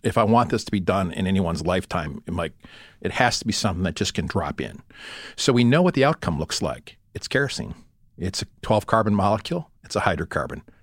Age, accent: 50-69, American